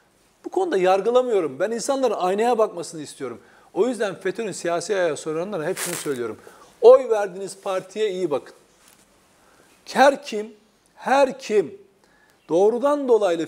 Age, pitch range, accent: 40-59, 195-275 Hz, native